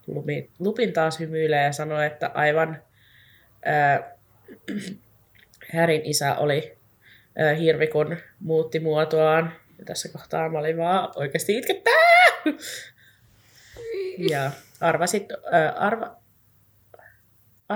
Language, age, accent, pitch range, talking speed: Finnish, 20-39, native, 135-165 Hz, 90 wpm